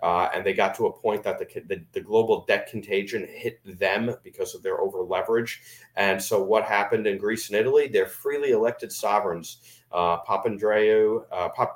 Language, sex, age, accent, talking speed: English, male, 40-59, American, 185 wpm